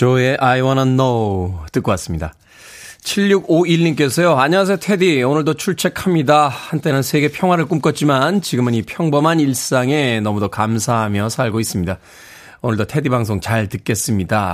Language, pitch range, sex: Korean, 105-150 Hz, male